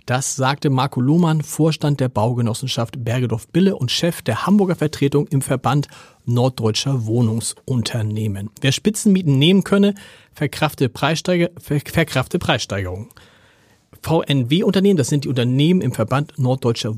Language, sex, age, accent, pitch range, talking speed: German, male, 40-59, German, 120-160 Hz, 115 wpm